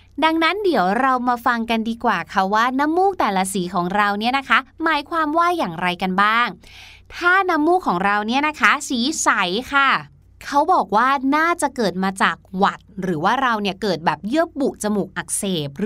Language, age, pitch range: Thai, 20-39, 200-275 Hz